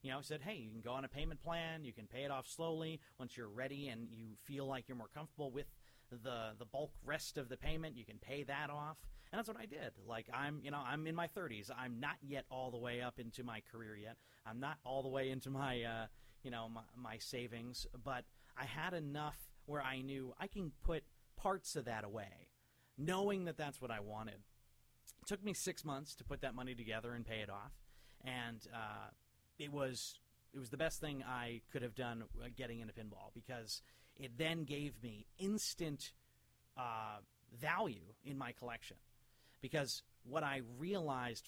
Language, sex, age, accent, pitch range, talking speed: English, male, 30-49, American, 120-150 Hz, 210 wpm